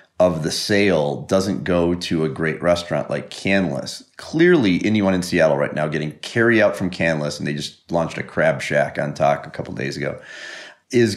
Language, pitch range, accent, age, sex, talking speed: English, 75-90 Hz, American, 30-49, male, 195 wpm